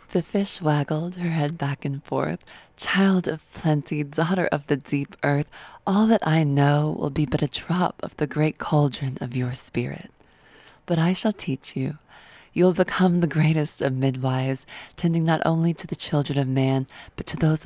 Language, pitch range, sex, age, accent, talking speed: English, 140-165 Hz, female, 20-39, American, 185 wpm